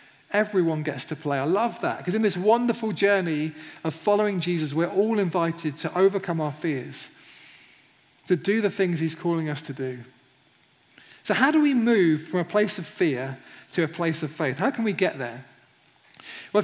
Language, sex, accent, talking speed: English, male, British, 190 wpm